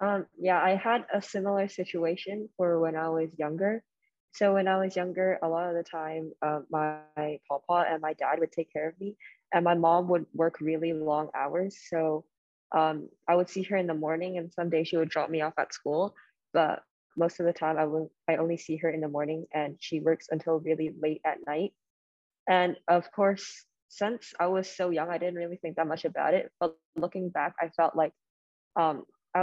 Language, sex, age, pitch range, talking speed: English, female, 20-39, 160-190 Hz, 210 wpm